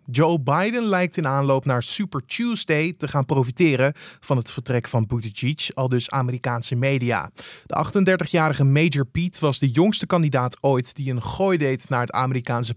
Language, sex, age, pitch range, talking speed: Dutch, male, 20-39, 130-170 Hz, 170 wpm